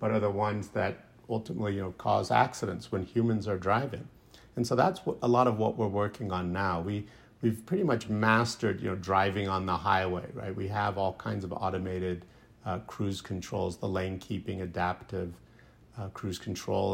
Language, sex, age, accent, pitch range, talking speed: English, male, 50-69, American, 95-120 Hz, 170 wpm